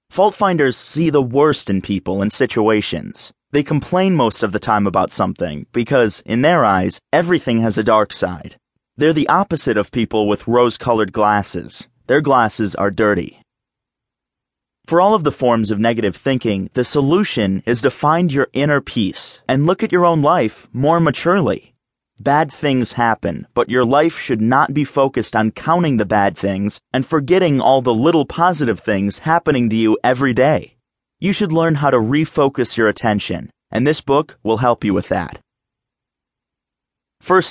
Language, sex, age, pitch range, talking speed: English, male, 30-49, 110-155 Hz, 170 wpm